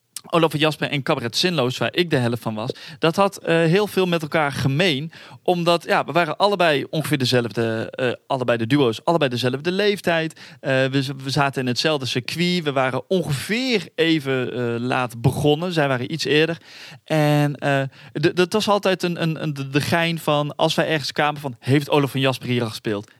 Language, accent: Dutch, Dutch